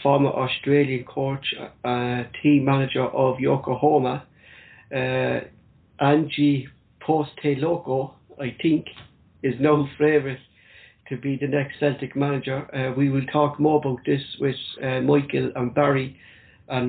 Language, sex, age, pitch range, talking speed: English, male, 60-79, 130-145 Hz, 125 wpm